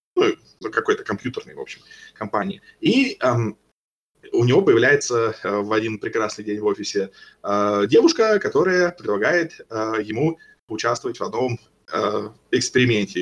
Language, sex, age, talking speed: Russian, male, 20-39, 130 wpm